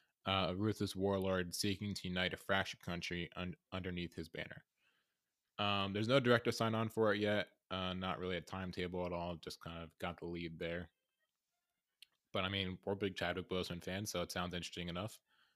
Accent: American